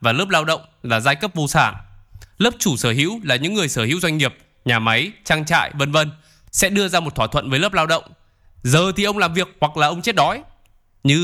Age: 20-39